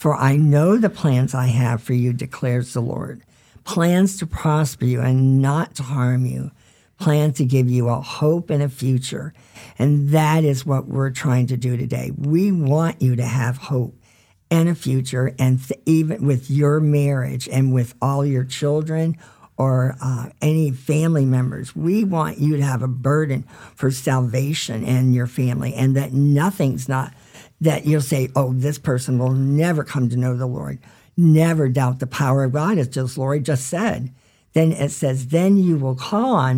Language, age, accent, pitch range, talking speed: English, 50-69, American, 130-155 Hz, 180 wpm